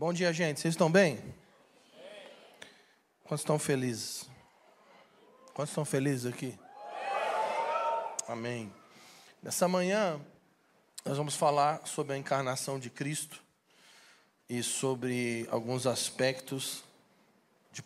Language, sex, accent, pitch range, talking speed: Portuguese, male, Brazilian, 125-145 Hz, 95 wpm